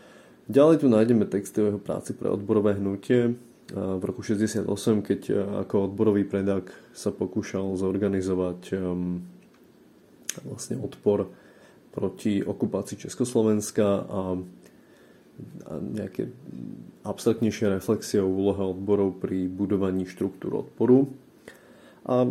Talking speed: 100 wpm